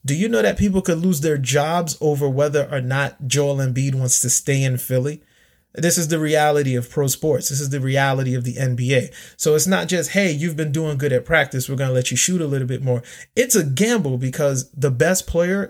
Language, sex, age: English, male, 30-49